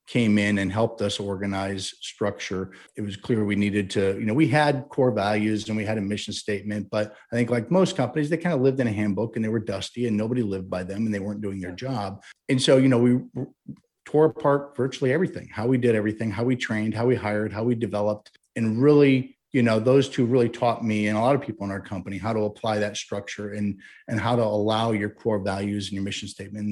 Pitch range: 105-125 Hz